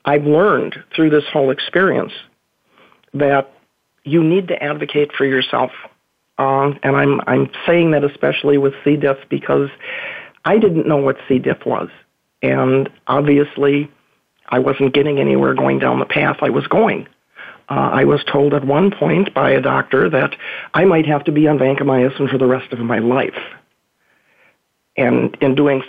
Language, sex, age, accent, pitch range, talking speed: English, male, 50-69, American, 135-155 Hz, 165 wpm